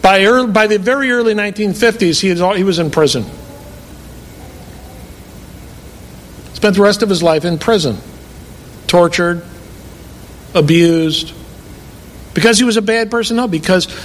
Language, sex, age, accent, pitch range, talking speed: English, male, 50-69, American, 155-220 Hz, 125 wpm